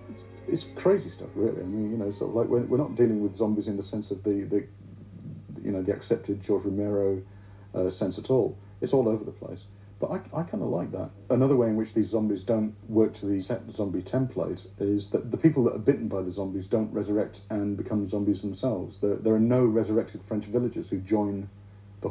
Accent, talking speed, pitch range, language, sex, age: British, 230 wpm, 100-115 Hz, English, male, 50-69